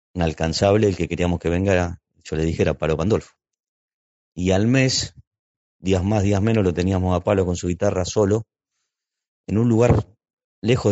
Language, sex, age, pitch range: Spanish, male, 30-49, 85-105 Hz